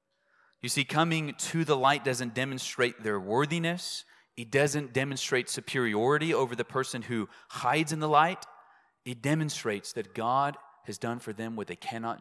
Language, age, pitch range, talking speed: English, 30-49, 110-135 Hz, 160 wpm